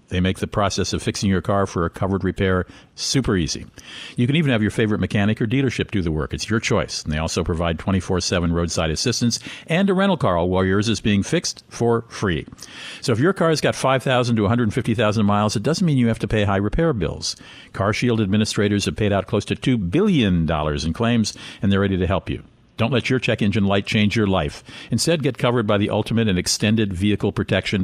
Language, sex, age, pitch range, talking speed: English, male, 50-69, 95-125 Hz, 225 wpm